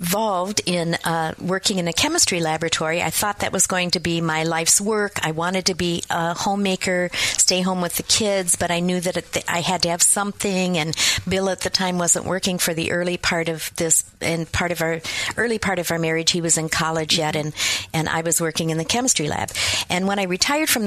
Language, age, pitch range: English, 50-69, 165-195 Hz